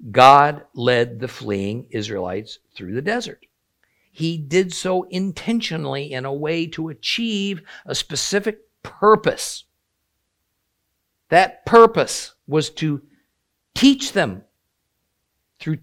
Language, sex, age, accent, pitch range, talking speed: English, male, 50-69, American, 145-235 Hz, 100 wpm